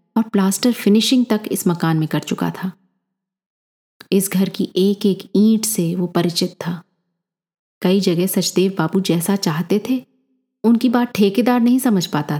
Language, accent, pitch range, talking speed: Hindi, native, 175-220 Hz, 160 wpm